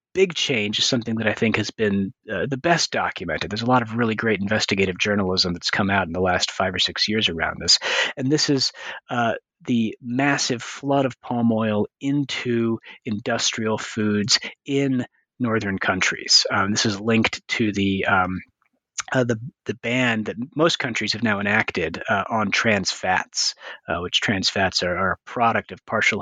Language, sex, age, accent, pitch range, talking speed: English, male, 30-49, American, 105-130 Hz, 185 wpm